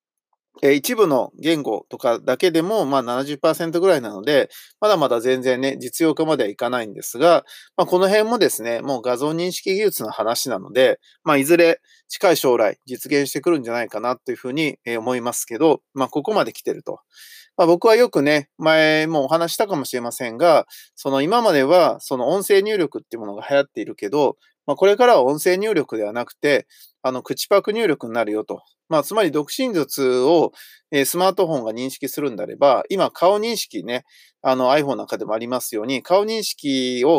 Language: Japanese